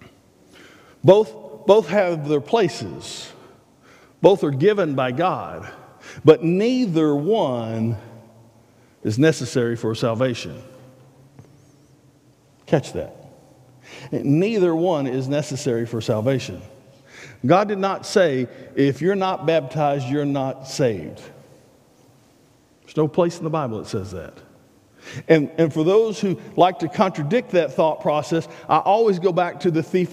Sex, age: male, 50-69